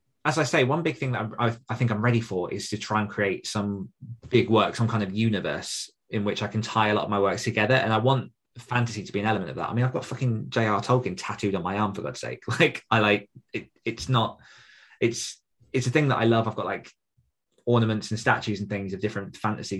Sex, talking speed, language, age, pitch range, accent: male, 255 wpm, English, 20-39, 105-120 Hz, British